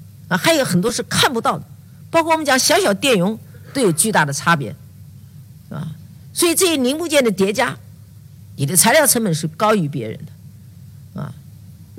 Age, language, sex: 50-69, Chinese, female